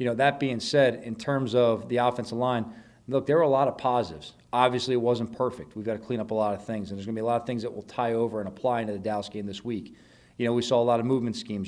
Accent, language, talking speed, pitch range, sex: American, English, 315 wpm, 110-125 Hz, male